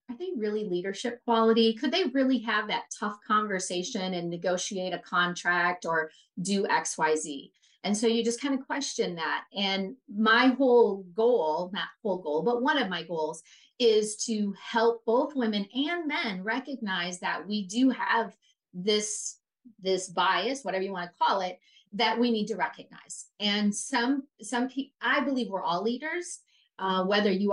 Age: 30-49